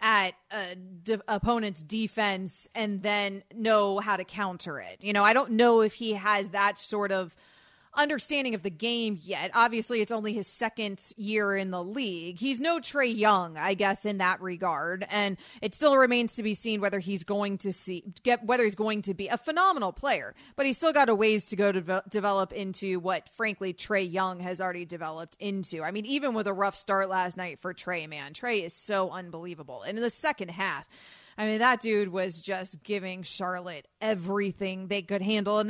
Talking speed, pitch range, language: 200 wpm, 195-240 Hz, English